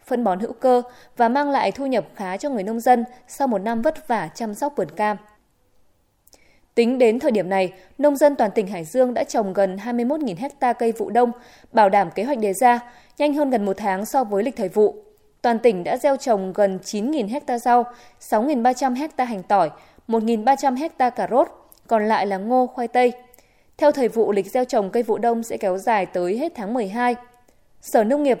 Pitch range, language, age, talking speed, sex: 210-270 Hz, Vietnamese, 20-39, 210 wpm, female